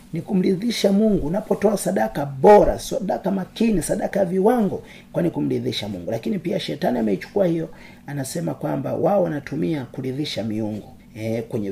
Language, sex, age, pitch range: Swahili, male, 40-59, 135-195 Hz